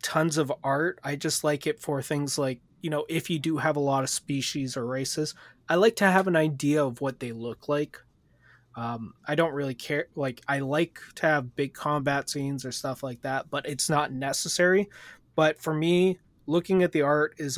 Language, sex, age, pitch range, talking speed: English, male, 20-39, 130-155 Hz, 210 wpm